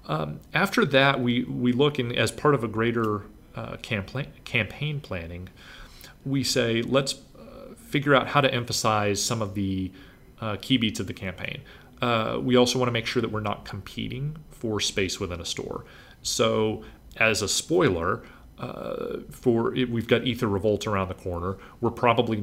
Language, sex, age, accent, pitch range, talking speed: English, male, 40-59, American, 95-125 Hz, 175 wpm